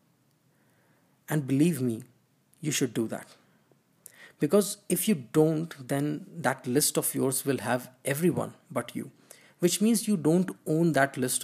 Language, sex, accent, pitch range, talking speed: English, male, Indian, 130-175 Hz, 145 wpm